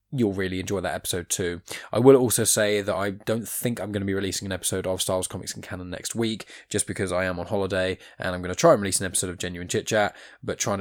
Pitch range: 95-115 Hz